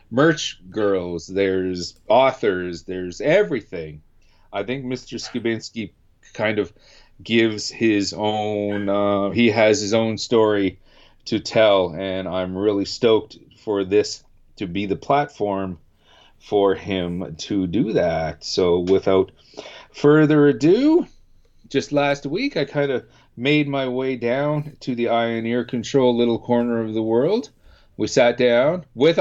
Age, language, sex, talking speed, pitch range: 40-59, English, male, 135 wpm, 100-135 Hz